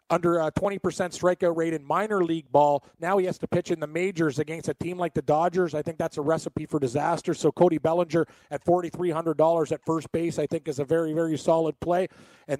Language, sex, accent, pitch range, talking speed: English, male, American, 155-175 Hz, 225 wpm